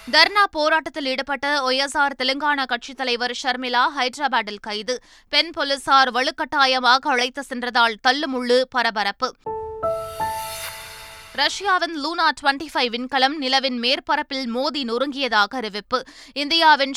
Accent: native